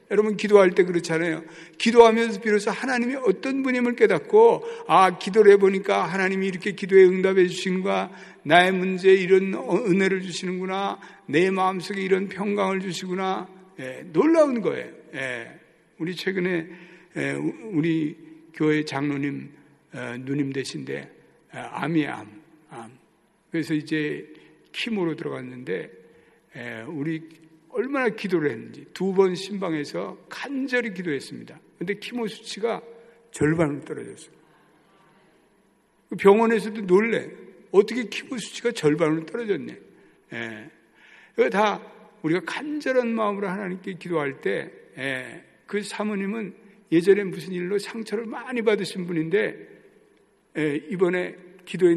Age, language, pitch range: 60-79, Korean, 160-210 Hz